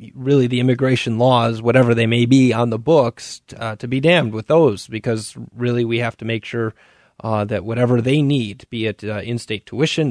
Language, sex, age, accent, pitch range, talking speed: English, male, 30-49, American, 110-135 Hz, 200 wpm